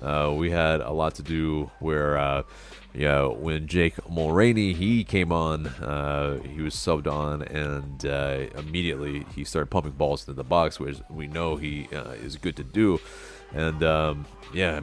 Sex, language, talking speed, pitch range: male, English, 175 wpm, 75-90 Hz